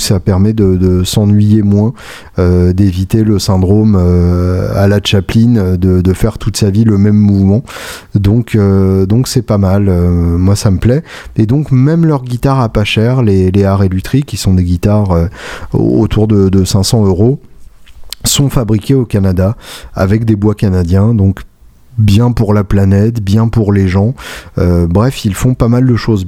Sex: male